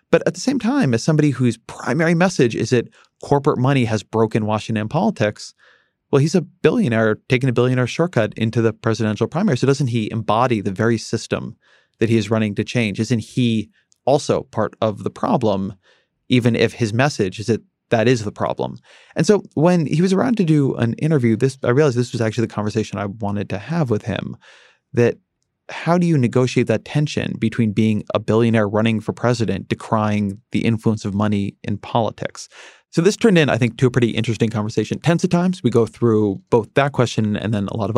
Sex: male